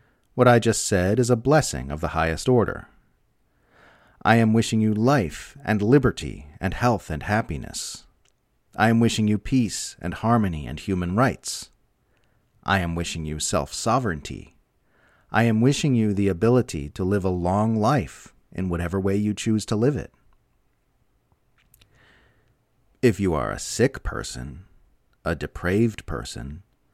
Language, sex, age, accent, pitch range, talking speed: English, male, 40-59, American, 90-125 Hz, 145 wpm